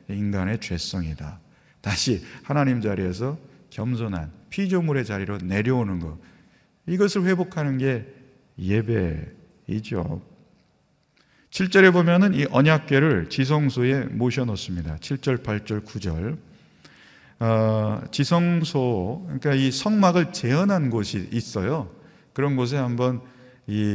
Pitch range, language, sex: 100-150 Hz, Korean, male